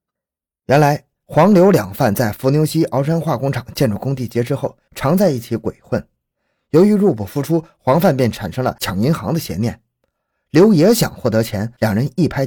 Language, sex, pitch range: Chinese, male, 115-160 Hz